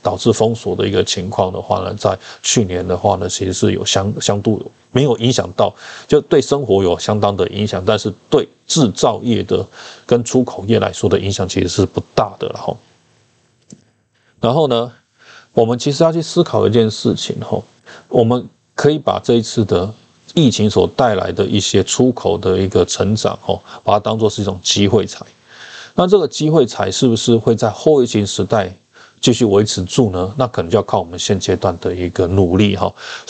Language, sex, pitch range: Chinese, male, 95-120 Hz